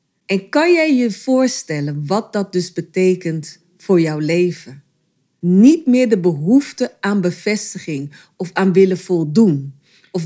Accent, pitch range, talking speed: Dutch, 165-215 Hz, 135 wpm